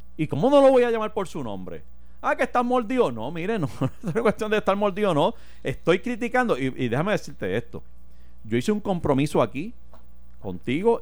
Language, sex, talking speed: Spanish, male, 195 wpm